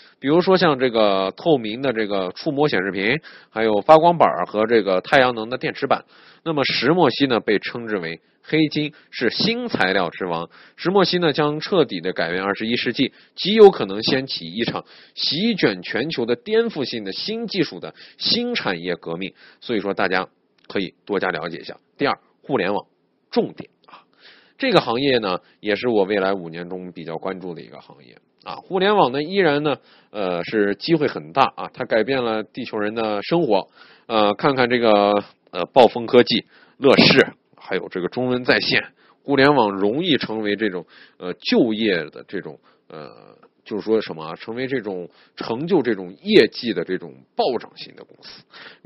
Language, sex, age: Chinese, male, 20-39